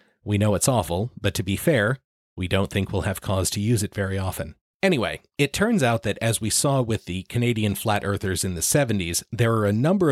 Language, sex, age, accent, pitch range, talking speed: English, male, 40-59, American, 95-125 Hz, 230 wpm